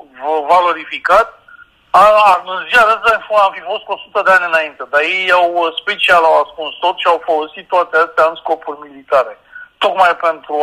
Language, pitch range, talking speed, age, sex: Romanian, 150-210 Hz, 175 wpm, 40-59, male